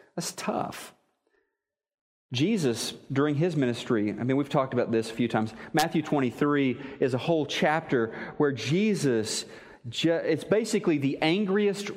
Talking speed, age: 135 wpm, 40-59